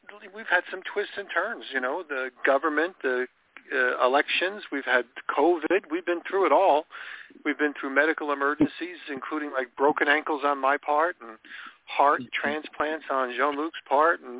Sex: male